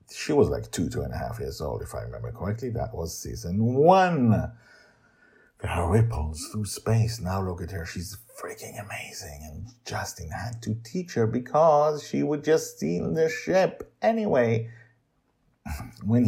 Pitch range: 90-120 Hz